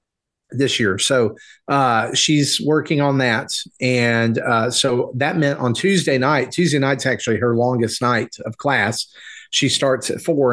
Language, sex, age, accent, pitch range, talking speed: English, male, 40-59, American, 115-140 Hz, 160 wpm